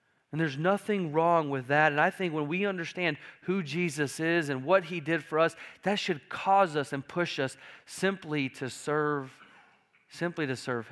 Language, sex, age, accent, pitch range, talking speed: English, male, 40-59, American, 150-180 Hz, 185 wpm